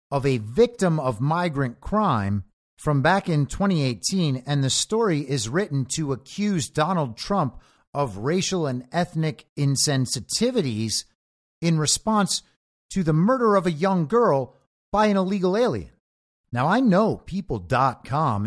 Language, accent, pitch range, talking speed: English, American, 125-185 Hz, 135 wpm